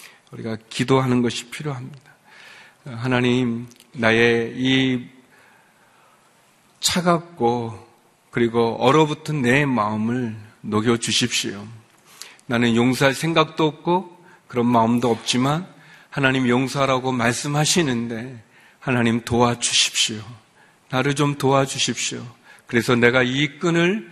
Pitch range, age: 120-165 Hz, 40-59